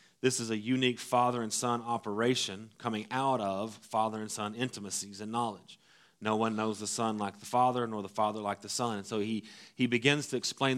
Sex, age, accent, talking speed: male, 30-49, American, 210 wpm